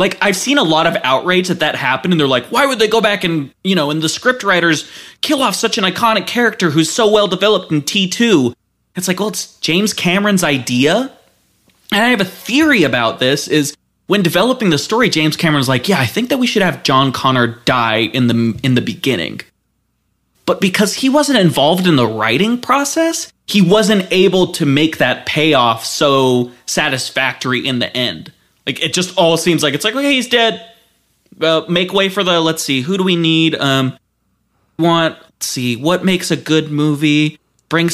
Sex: male